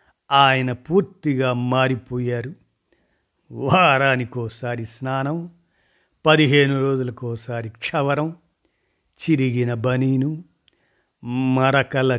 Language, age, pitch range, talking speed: Telugu, 50-69, 120-145 Hz, 55 wpm